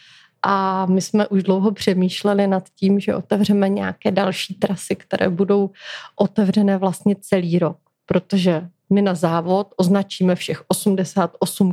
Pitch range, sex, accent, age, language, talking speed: 180-205 Hz, female, native, 30-49, Czech, 135 wpm